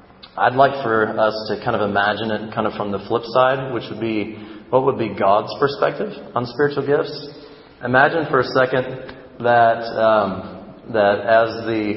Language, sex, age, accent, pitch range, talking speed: English, male, 30-49, American, 105-125 Hz, 175 wpm